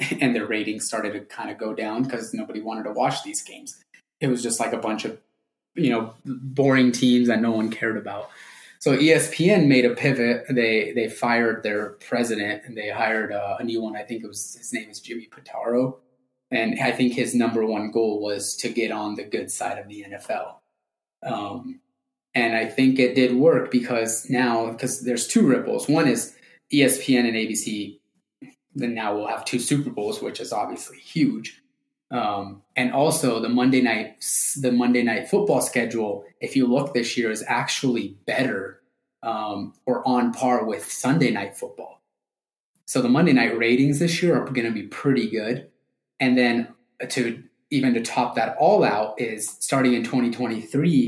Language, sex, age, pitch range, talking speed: English, male, 20-39, 110-130 Hz, 185 wpm